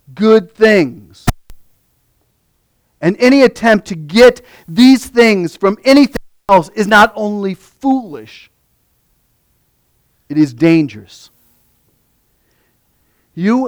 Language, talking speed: English, 90 wpm